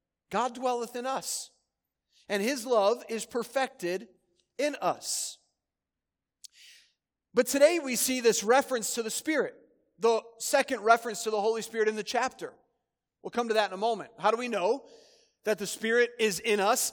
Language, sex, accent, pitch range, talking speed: English, male, American, 200-255 Hz, 165 wpm